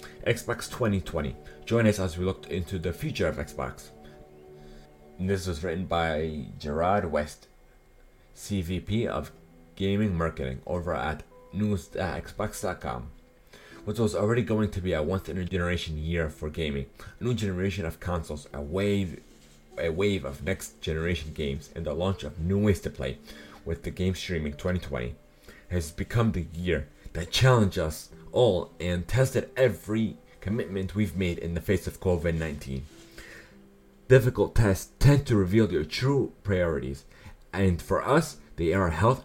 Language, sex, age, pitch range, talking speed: English, male, 30-49, 80-105 Hz, 150 wpm